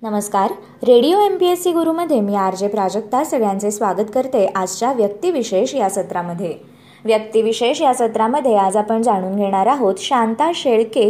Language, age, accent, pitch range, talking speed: Marathi, 20-39, native, 200-265 Hz, 170 wpm